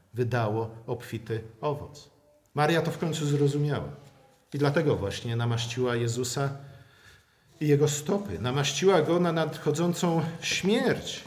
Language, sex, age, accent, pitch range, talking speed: Polish, male, 50-69, native, 115-155 Hz, 110 wpm